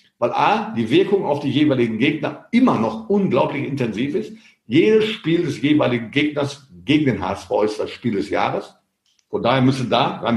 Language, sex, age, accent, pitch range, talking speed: German, male, 50-69, German, 125-155 Hz, 180 wpm